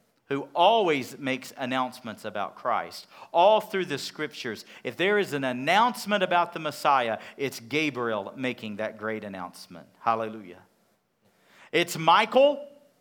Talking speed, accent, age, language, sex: 125 wpm, American, 40-59, English, male